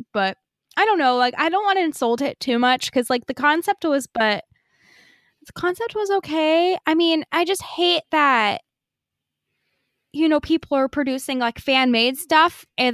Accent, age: American, 10-29